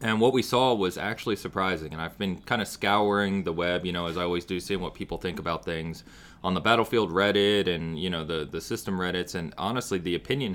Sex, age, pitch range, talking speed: male, 30-49, 80-100 Hz, 240 wpm